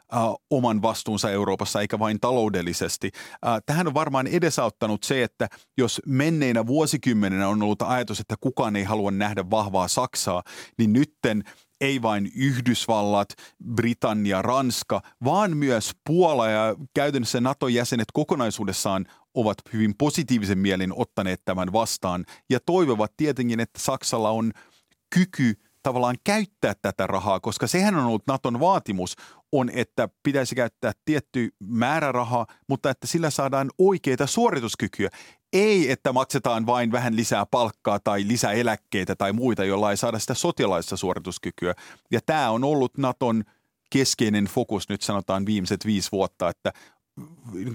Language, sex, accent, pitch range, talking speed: Finnish, male, native, 105-135 Hz, 135 wpm